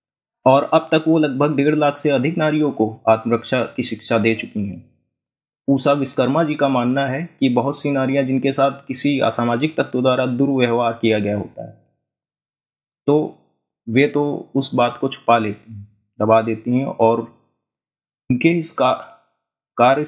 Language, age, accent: Hindi, 30-49, native